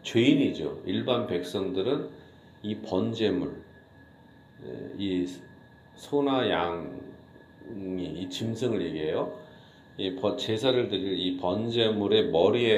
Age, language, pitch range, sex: 40-59, Korean, 95-130 Hz, male